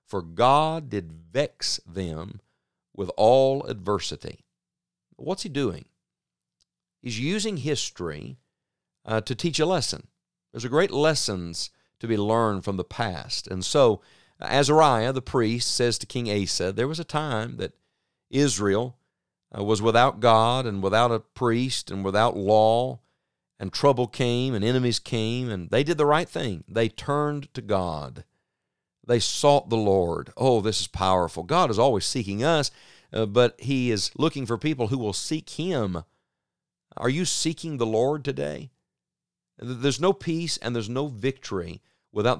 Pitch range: 100-135 Hz